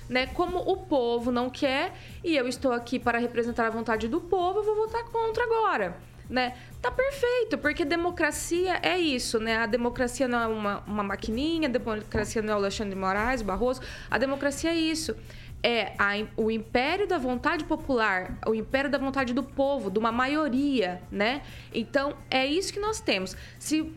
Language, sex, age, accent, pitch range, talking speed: Portuguese, female, 20-39, Brazilian, 235-335 Hz, 190 wpm